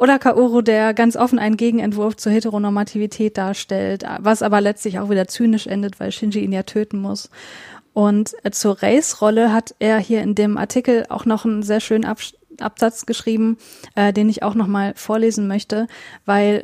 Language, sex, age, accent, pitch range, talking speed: German, female, 20-39, German, 205-235 Hz, 165 wpm